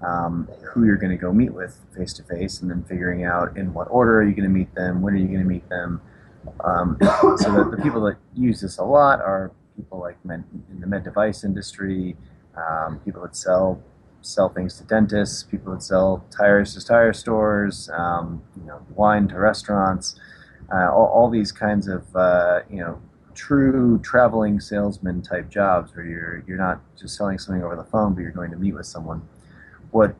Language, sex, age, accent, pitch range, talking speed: English, male, 30-49, American, 90-105 Hz, 205 wpm